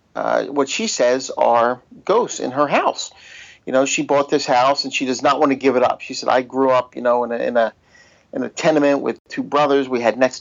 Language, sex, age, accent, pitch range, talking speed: English, male, 50-69, American, 125-135 Hz, 255 wpm